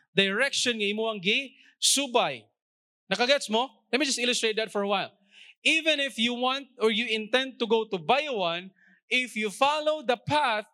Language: English